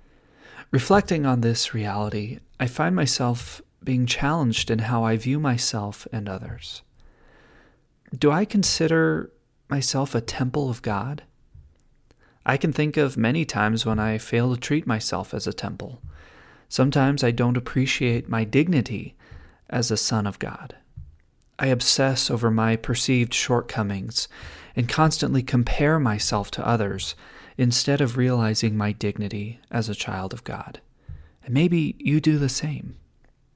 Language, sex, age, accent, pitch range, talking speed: English, male, 30-49, American, 110-140 Hz, 140 wpm